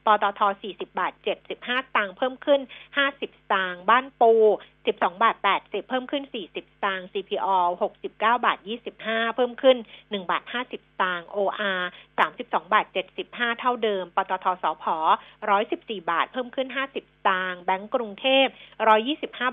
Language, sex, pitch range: Thai, female, 195-255 Hz